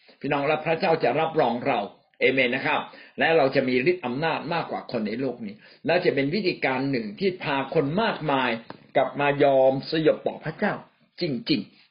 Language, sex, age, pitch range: Thai, male, 60-79, 140-210 Hz